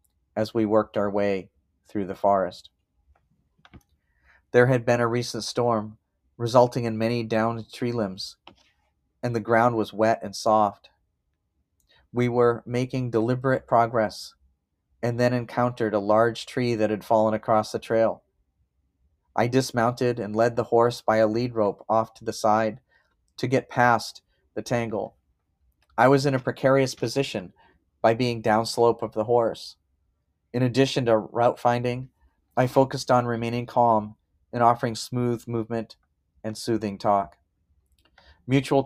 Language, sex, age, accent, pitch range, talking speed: English, male, 40-59, American, 90-120 Hz, 145 wpm